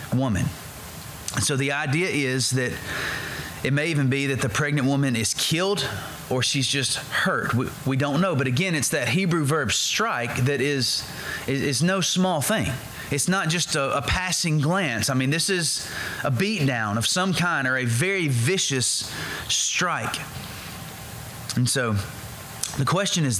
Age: 30-49